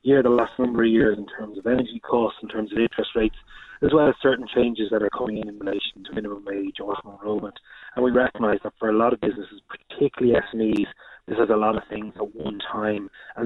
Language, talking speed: English, 235 wpm